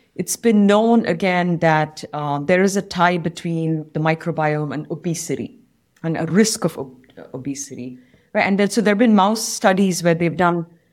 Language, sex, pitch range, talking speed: English, female, 155-195 Hz, 175 wpm